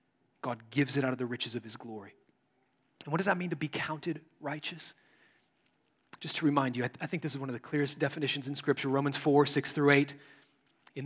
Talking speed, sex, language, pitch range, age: 220 wpm, male, English, 140-170 Hz, 30-49